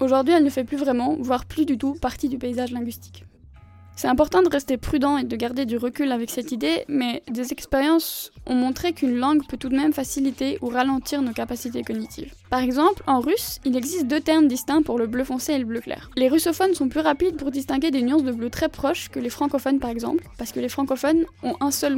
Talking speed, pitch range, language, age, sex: 235 wpm, 245-300 Hz, French, 10-29, female